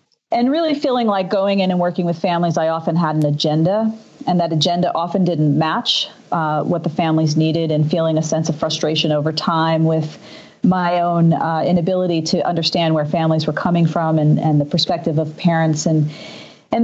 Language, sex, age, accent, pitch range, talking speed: English, female, 40-59, American, 160-190 Hz, 195 wpm